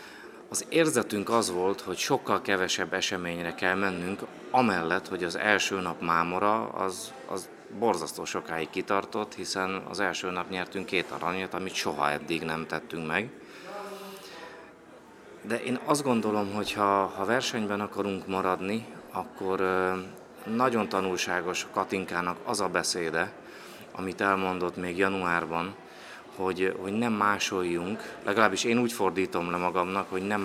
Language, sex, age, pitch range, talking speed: Hungarian, male, 30-49, 90-105 Hz, 130 wpm